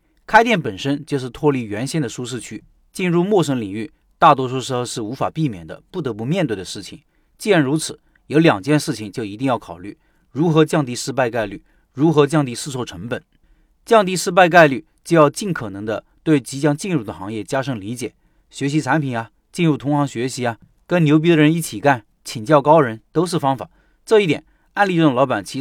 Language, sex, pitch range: Chinese, male, 120-160 Hz